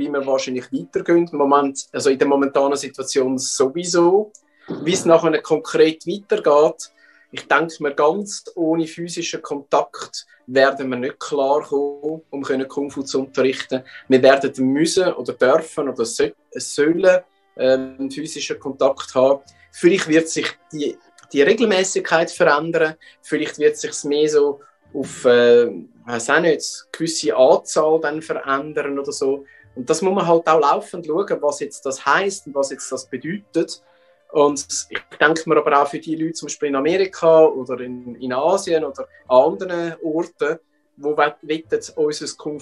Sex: male